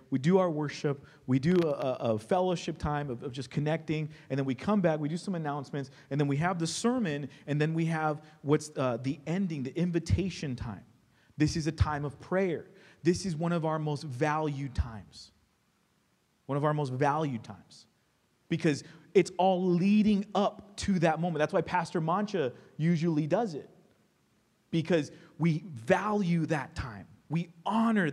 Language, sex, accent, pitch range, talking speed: English, male, American, 145-190 Hz, 175 wpm